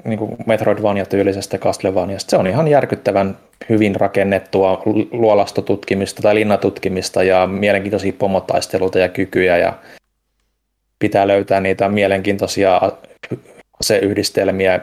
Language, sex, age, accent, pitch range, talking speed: Finnish, male, 20-39, native, 100-110 Hz, 95 wpm